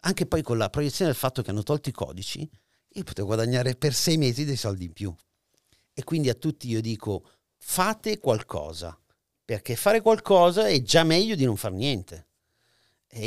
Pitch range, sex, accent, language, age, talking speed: 105-155 Hz, male, native, Italian, 50-69, 185 wpm